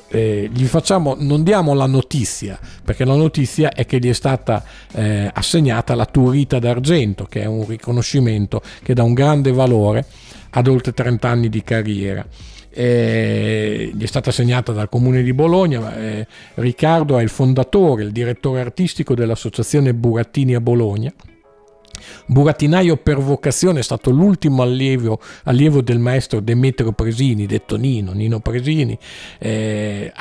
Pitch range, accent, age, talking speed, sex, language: 115-140 Hz, native, 50-69, 145 wpm, male, Italian